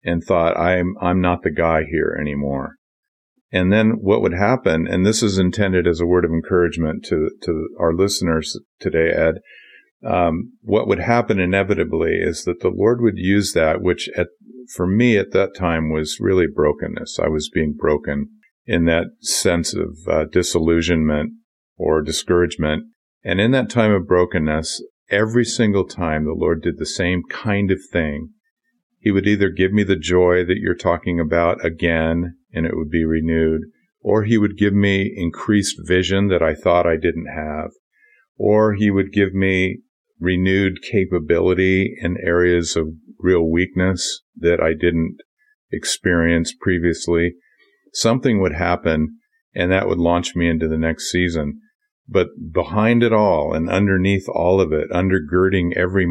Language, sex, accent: English, male, American